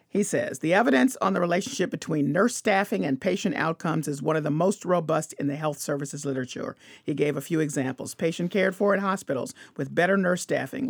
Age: 40-59